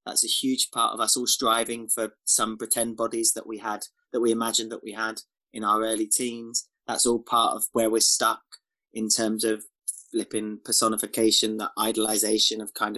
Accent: British